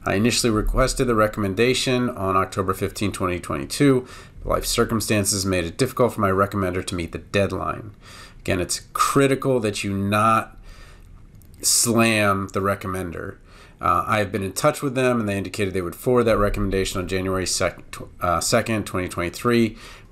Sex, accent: male, American